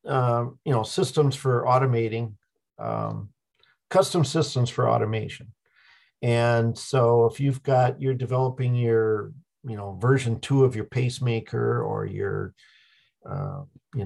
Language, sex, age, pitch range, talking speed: English, male, 50-69, 115-140 Hz, 130 wpm